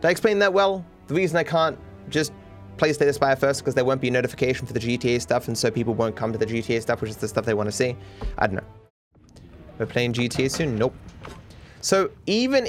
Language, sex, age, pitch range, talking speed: English, male, 20-39, 115-155 Hz, 245 wpm